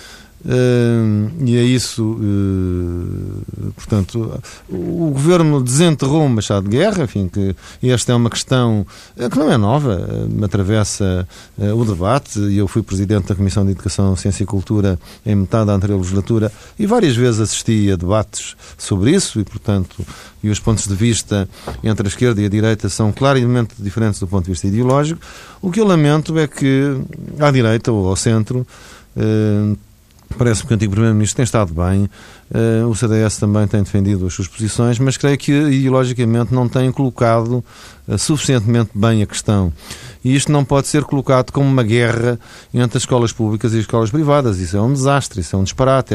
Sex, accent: male, Portuguese